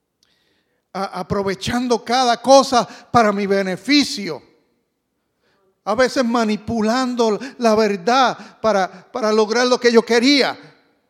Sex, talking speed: male, 95 wpm